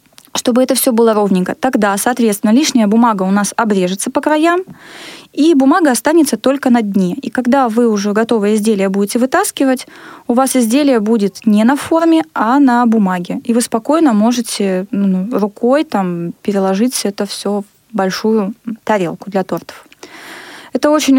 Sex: female